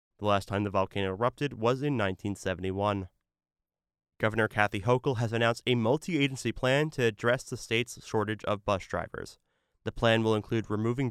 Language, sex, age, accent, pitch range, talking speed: English, male, 20-39, American, 100-125 Hz, 160 wpm